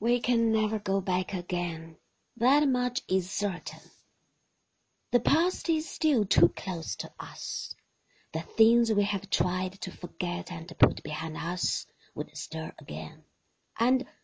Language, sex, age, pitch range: Chinese, female, 40-59, 180-260 Hz